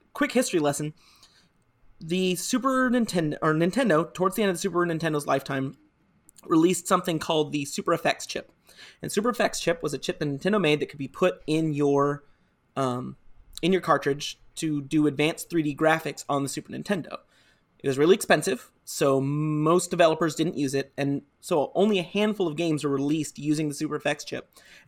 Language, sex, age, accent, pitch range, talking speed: English, male, 30-49, American, 140-170 Hz, 180 wpm